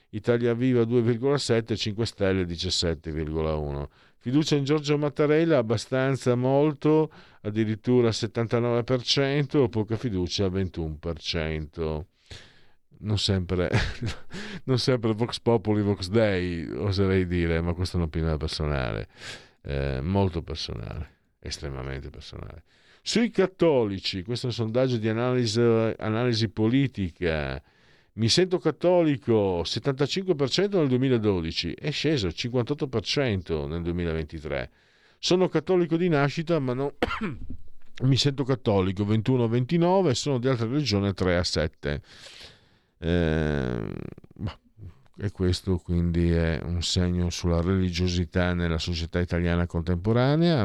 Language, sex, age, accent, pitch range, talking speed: Italian, male, 50-69, native, 85-130 Hz, 100 wpm